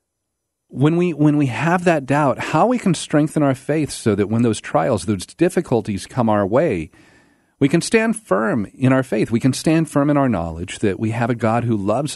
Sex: male